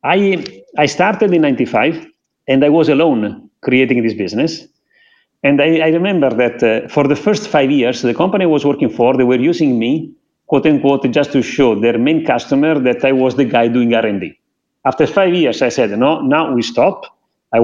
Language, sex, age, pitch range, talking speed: English, male, 40-59, 125-165 Hz, 195 wpm